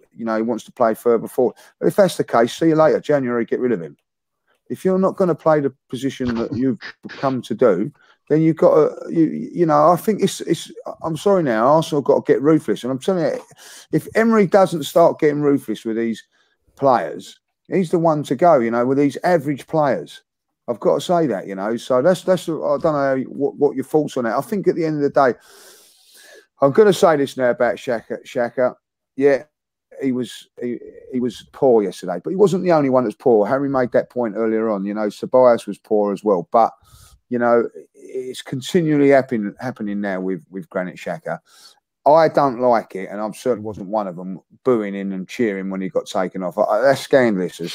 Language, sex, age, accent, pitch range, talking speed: English, male, 30-49, British, 110-160 Hz, 225 wpm